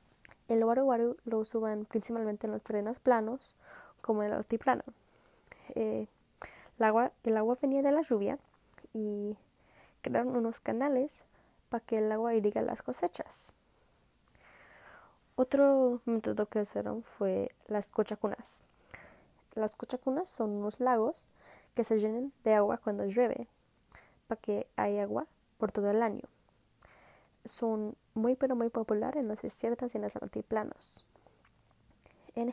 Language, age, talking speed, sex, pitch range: English, 10-29, 135 wpm, female, 215-255 Hz